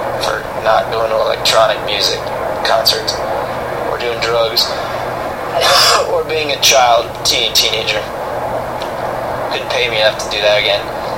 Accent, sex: American, male